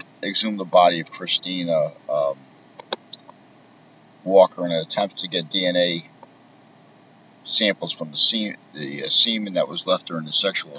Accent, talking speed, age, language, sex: American, 145 wpm, 50-69, English, male